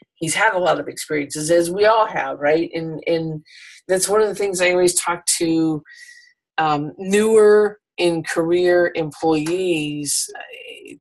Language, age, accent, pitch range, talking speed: English, 50-69, American, 155-190 Hz, 155 wpm